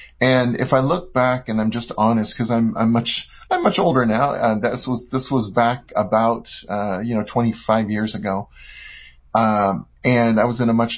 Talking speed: 200 wpm